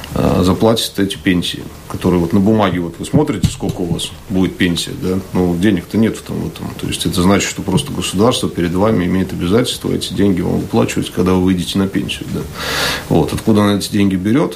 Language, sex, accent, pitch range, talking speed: Russian, male, native, 90-105 Hz, 200 wpm